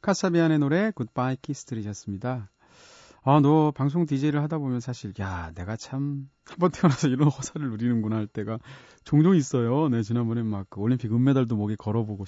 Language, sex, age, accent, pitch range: Korean, male, 30-49, native, 110-150 Hz